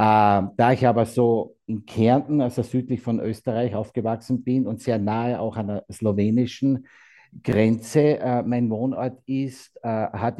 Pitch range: 105-125 Hz